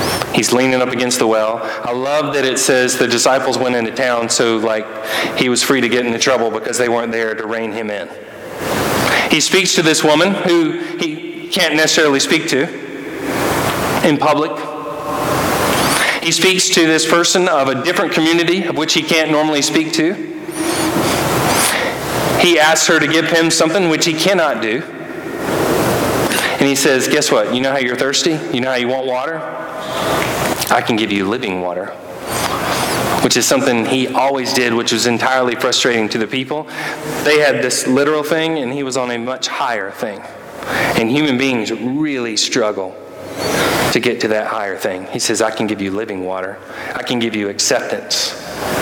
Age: 40-59